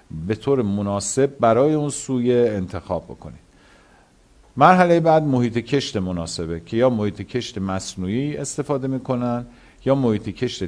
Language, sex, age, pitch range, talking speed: Persian, male, 50-69, 100-130 Hz, 130 wpm